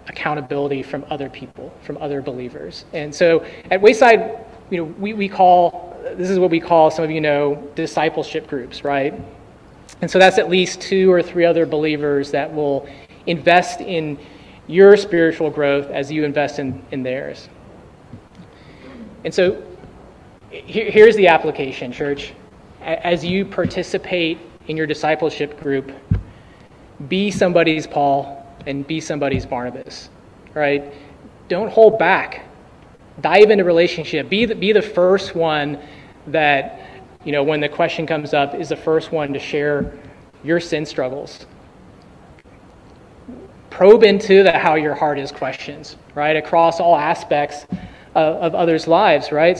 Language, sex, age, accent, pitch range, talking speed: English, male, 30-49, American, 145-175 Hz, 145 wpm